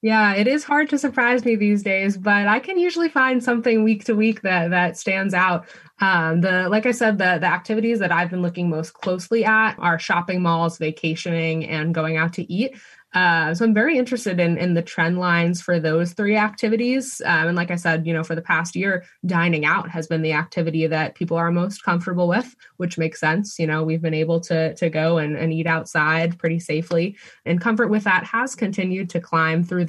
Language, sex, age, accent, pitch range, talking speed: English, female, 20-39, American, 165-205 Hz, 220 wpm